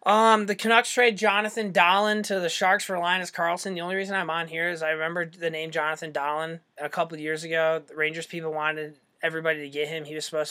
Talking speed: 235 wpm